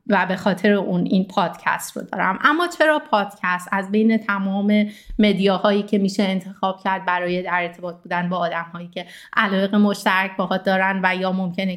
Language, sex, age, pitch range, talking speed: Persian, female, 30-49, 180-215 Hz, 180 wpm